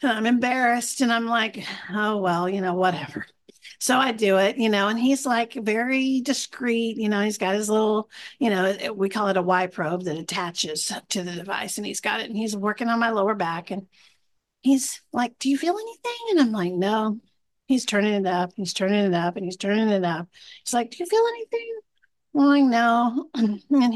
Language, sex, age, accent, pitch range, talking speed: English, female, 50-69, American, 200-260 Hz, 215 wpm